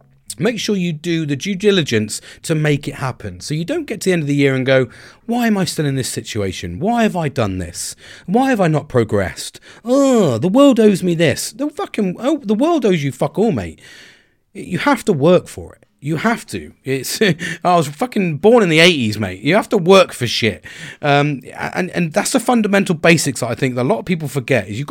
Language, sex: English, male